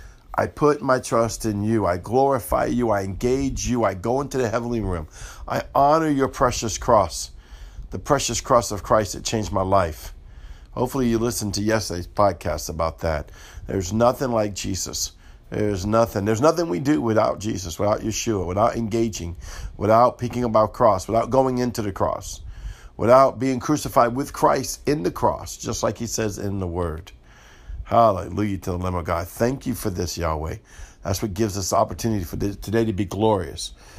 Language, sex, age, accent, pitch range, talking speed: English, male, 50-69, American, 95-125 Hz, 180 wpm